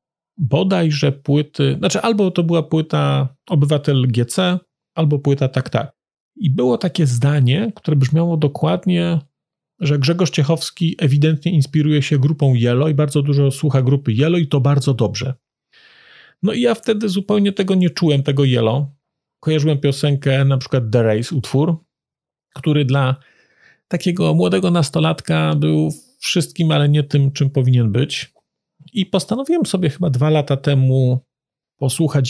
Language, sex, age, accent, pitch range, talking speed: Polish, male, 40-59, native, 135-170 Hz, 140 wpm